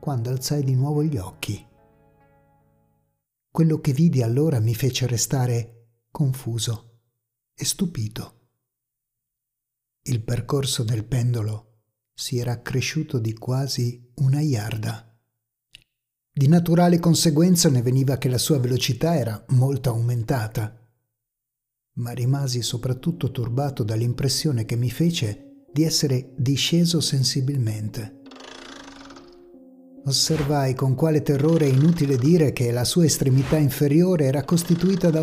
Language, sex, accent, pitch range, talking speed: Italian, male, native, 125-155 Hz, 110 wpm